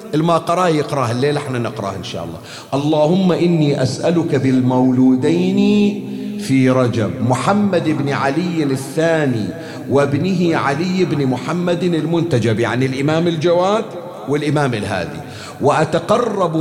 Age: 50-69